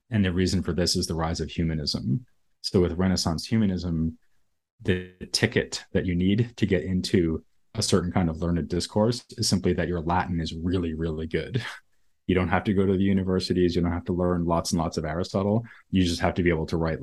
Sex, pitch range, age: male, 80-100 Hz, 30-49